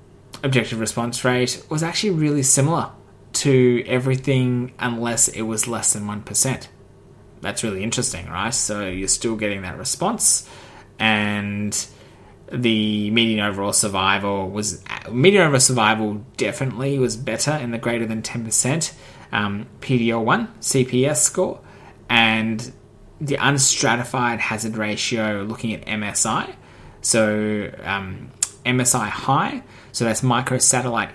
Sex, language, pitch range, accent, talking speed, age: male, English, 105-125 Hz, Australian, 120 wpm, 20-39